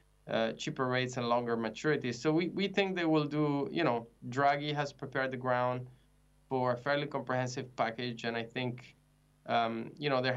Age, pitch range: 20-39, 120-140 Hz